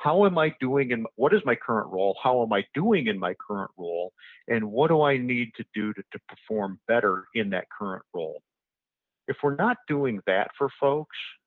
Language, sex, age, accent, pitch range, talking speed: English, male, 50-69, American, 100-150 Hz, 210 wpm